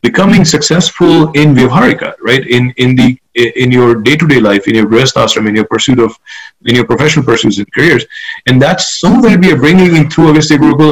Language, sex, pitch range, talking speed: English, male, 120-155 Hz, 190 wpm